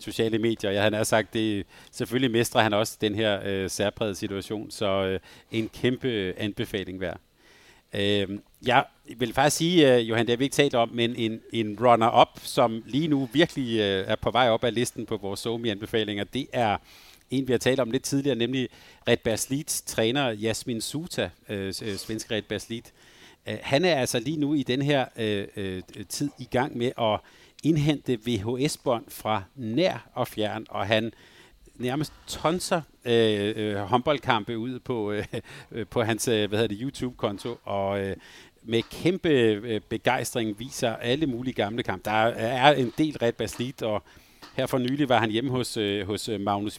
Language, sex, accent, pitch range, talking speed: Danish, male, native, 105-125 Hz, 180 wpm